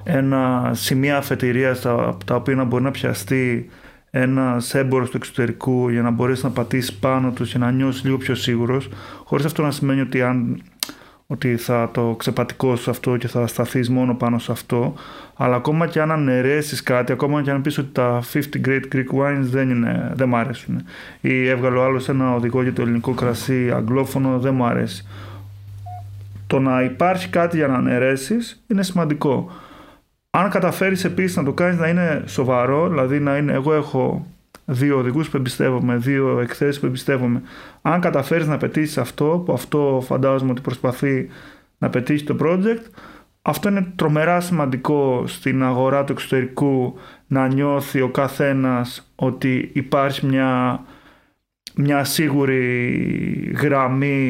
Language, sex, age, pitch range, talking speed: Greek, male, 30-49, 125-145 Hz, 155 wpm